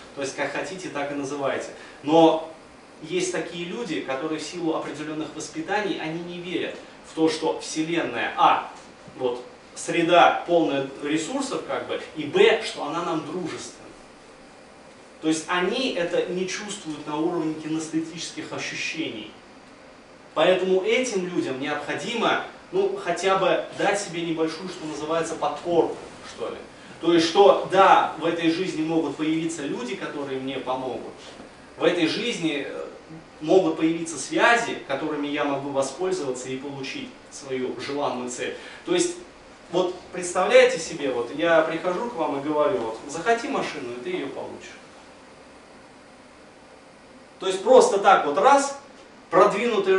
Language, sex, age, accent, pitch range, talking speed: Russian, male, 20-39, native, 155-190 Hz, 140 wpm